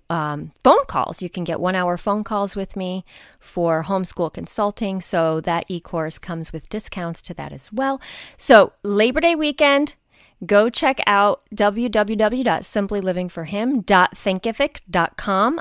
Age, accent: 30-49, American